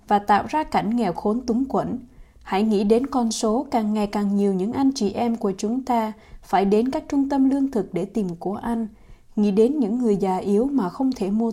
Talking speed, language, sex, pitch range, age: 235 wpm, Vietnamese, female, 200-260 Hz, 20-39